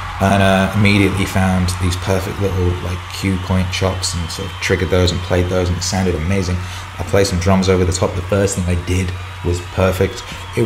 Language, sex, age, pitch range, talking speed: English, male, 30-49, 90-95 Hz, 220 wpm